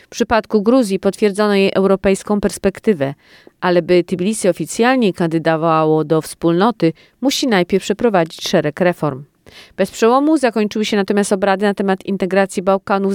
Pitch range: 180-210 Hz